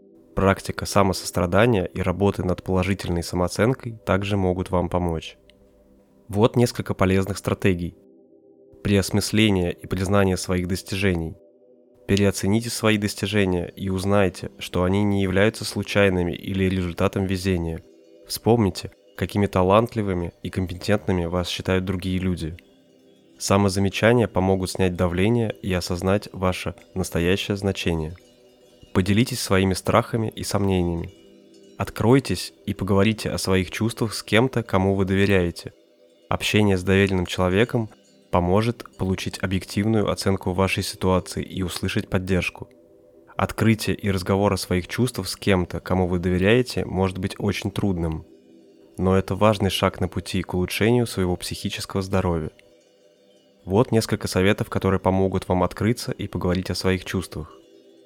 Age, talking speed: 20-39, 120 wpm